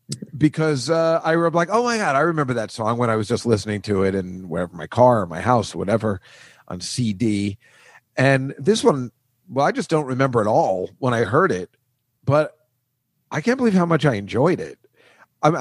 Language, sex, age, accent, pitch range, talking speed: English, male, 40-59, American, 110-150 Hz, 210 wpm